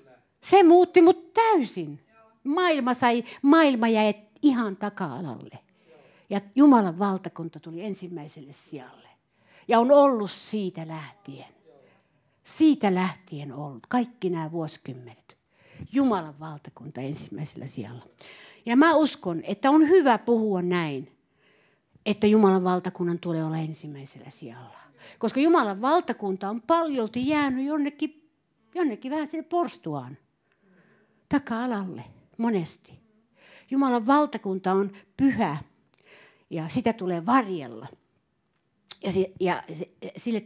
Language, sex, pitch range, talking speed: Finnish, female, 155-240 Hz, 105 wpm